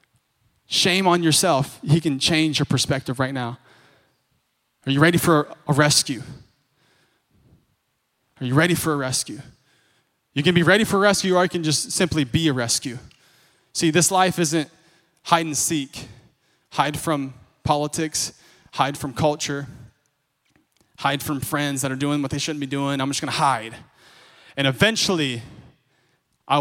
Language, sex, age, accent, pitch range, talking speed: English, male, 20-39, American, 130-165 Hz, 155 wpm